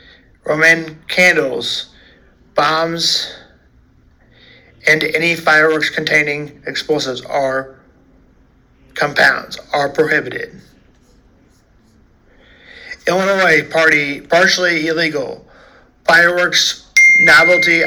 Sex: male